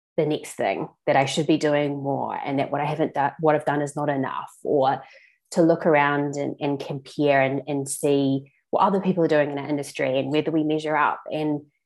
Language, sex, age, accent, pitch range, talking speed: English, female, 20-39, Australian, 145-170 Hz, 230 wpm